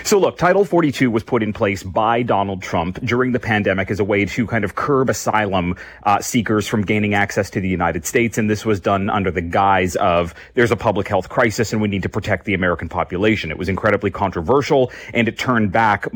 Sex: male